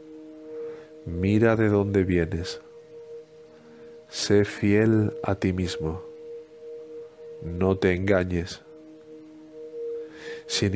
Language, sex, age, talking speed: Spanish, male, 50-69, 75 wpm